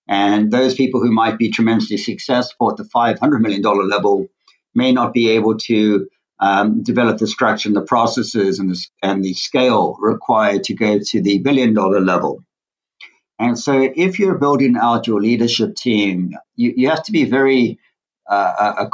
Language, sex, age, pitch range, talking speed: English, male, 60-79, 105-125 Hz, 170 wpm